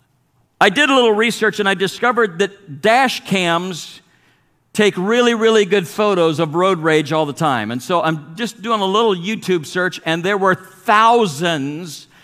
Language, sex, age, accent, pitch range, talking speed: English, male, 50-69, American, 175-220 Hz, 170 wpm